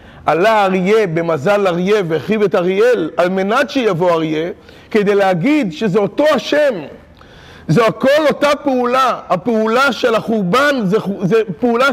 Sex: male